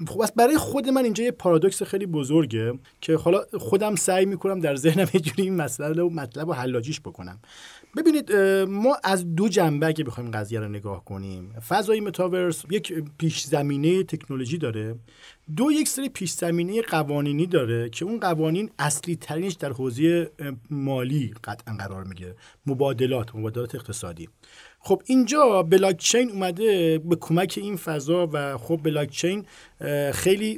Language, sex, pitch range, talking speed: Persian, male, 120-170 Hz, 140 wpm